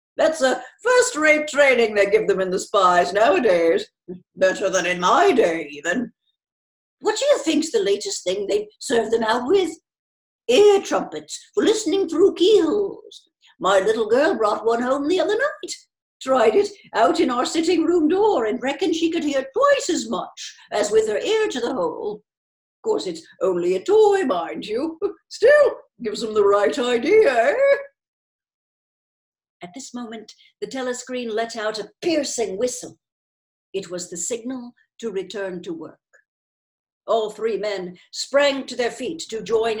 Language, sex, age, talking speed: English, female, 60-79, 165 wpm